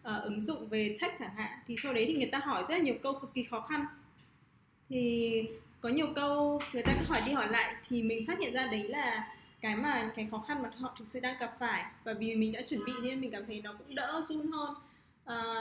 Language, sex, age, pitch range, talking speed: Vietnamese, female, 20-39, 220-275 Hz, 260 wpm